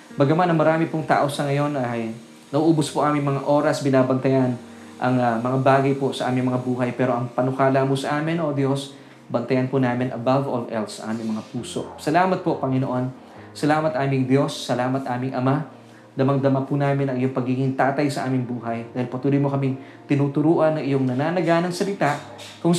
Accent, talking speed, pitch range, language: native, 180 wpm, 125-145 Hz, Filipino